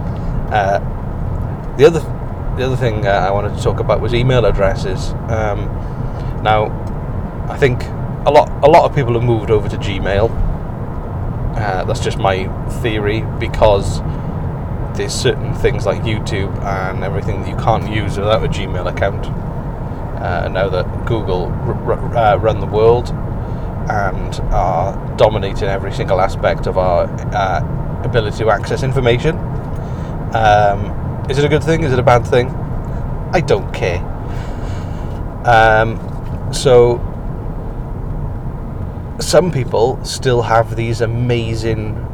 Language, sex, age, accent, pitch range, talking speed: English, male, 30-49, British, 100-120 Hz, 135 wpm